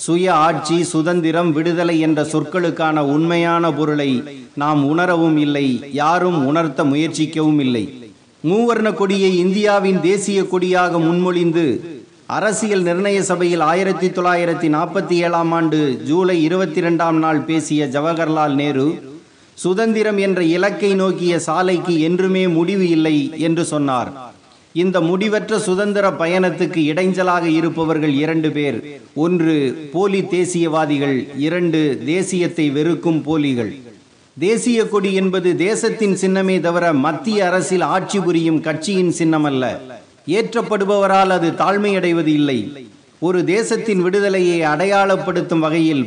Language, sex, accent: Tamil, male, native